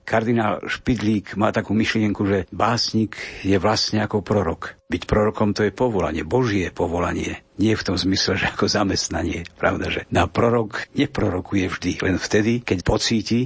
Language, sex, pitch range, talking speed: Slovak, male, 95-115 Hz, 155 wpm